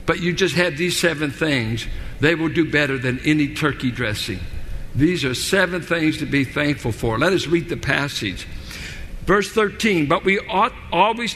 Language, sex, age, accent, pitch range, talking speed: English, male, 60-79, American, 130-185 Hz, 180 wpm